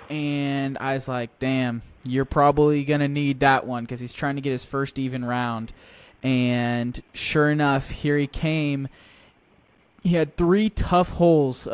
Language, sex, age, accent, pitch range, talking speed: English, male, 20-39, American, 125-155 Hz, 165 wpm